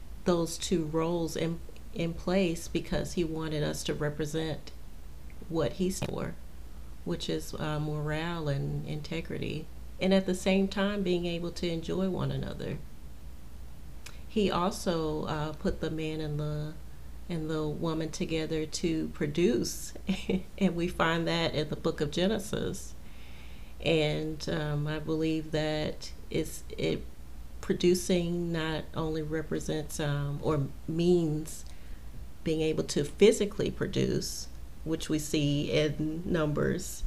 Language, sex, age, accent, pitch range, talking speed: English, female, 40-59, American, 145-175 Hz, 130 wpm